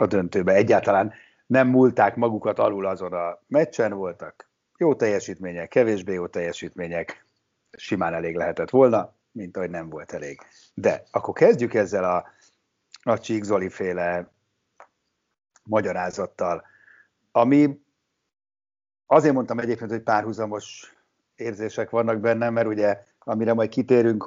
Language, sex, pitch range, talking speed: Hungarian, male, 95-120 Hz, 120 wpm